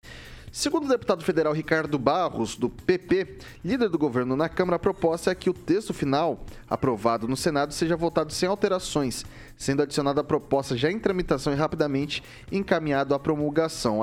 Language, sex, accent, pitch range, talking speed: Portuguese, male, Brazilian, 135-165 Hz, 165 wpm